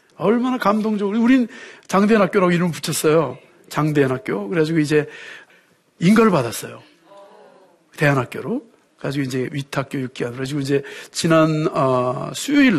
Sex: male